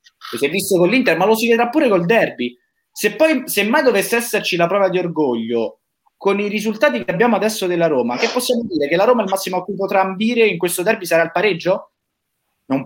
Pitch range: 160-215 Hz